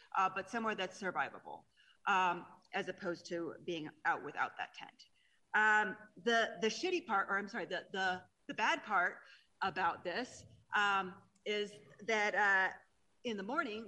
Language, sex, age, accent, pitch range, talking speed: English, female, 30-49, American, 175-215 Hz, 155 wpm